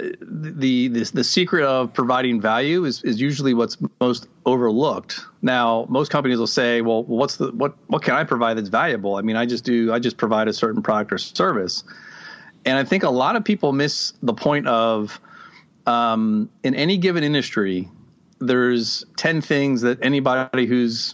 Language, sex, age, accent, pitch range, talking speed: English, male, 40-59, American, 120-145 Hz, 180 wpm